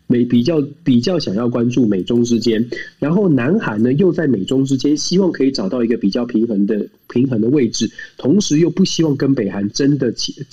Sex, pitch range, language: male, 110-150 Hz, Chinese